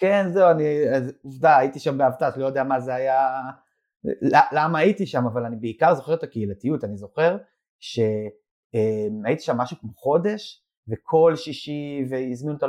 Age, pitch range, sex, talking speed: 30-49, 120-150 Hz, male, 160 wpm